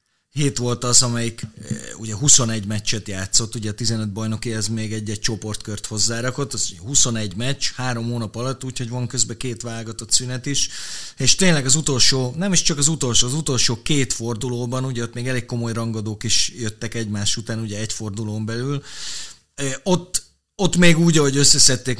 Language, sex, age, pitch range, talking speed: Hungarian, male, 30-49, 110-140 Hz, 175 wpm